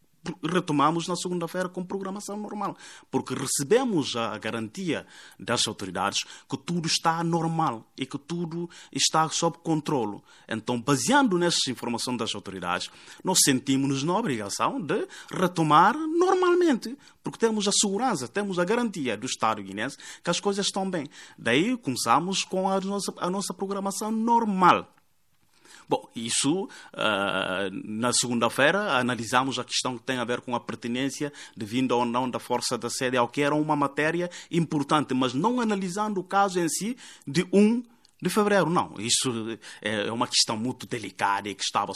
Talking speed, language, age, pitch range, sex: 155 wpm, Portuguese, 30-49, 115-175 Hz, male